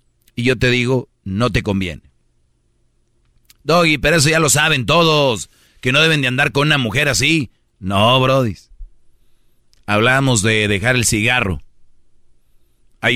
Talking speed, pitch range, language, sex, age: 140 wpm, 100-135 Hz, Spanish, male, 40-59